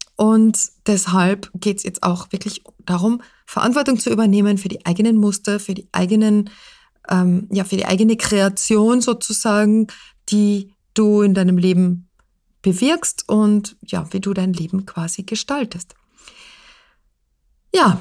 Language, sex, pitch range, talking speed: German, female, 190-220 Hz, 135 wpm